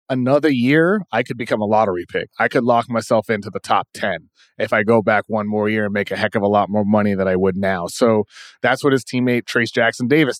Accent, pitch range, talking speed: American, 110-135 Hz, 255 wpm